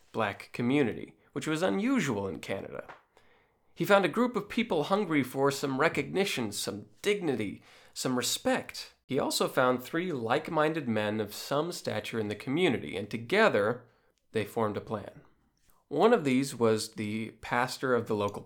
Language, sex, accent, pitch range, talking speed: English, male, American, 110-145 Hz, 155 wpm